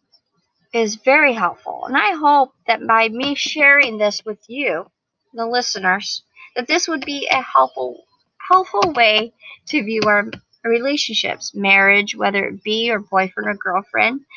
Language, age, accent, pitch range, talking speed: English, 40-59, American, 200-250 Hz, 145 wpm